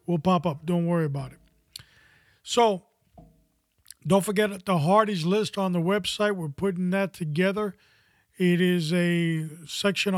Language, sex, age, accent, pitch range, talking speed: English, male, 40-59, American, 160-190 Hz, 140 wpm